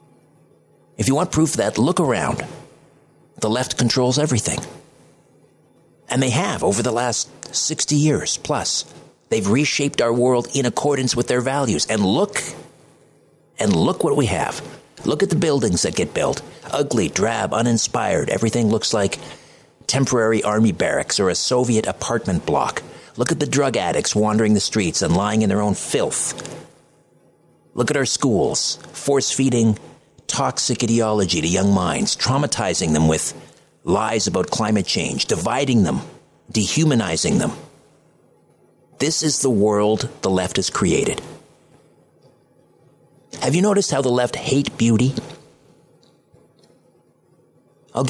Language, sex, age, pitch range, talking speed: English, male, 50-69, 110-140 Hz, 135 wpm